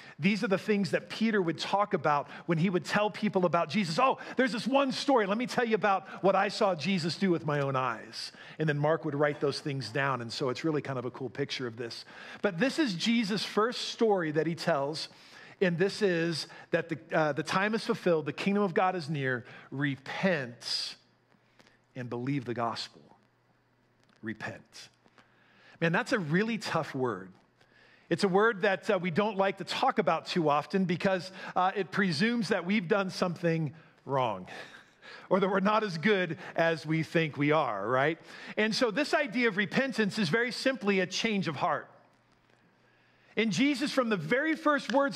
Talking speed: 195 wpm